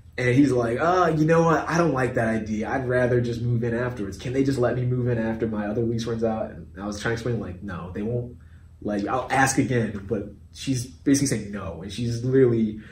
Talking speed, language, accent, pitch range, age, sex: 245 wpm, English, American, 100-125 Hz, 20-39, male